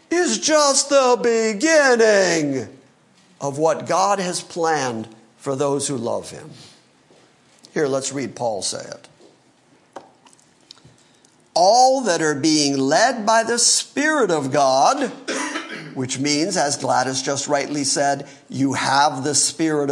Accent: American